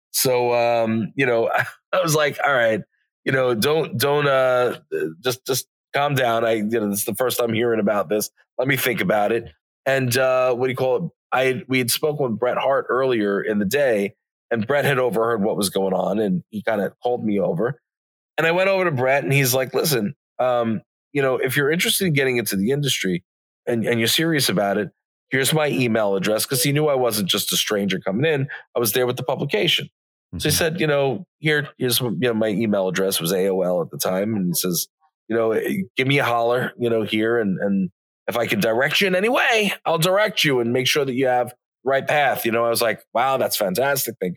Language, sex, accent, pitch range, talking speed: English, male, American, 105-135 Hz, 235 wpm